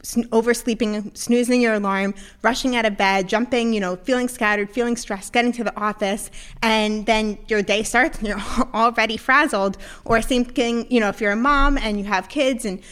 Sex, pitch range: female, 200-245 Hz